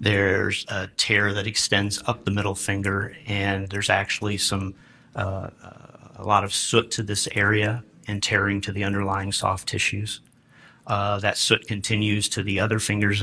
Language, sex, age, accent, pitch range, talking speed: English, male, 40-59, American, 95-110 Hz, 165 wpm